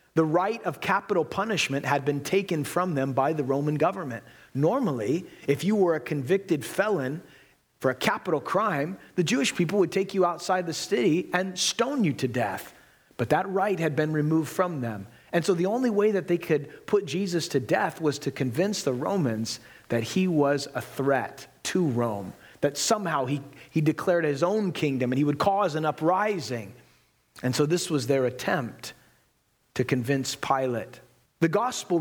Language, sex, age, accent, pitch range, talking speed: English, male, 30-49, American, 135-185 Hz, 180 wpm